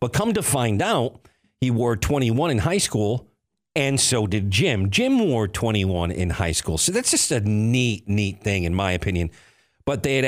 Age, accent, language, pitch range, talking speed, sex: 50-69, American, English, 95-125 Hz, 200 wpm, male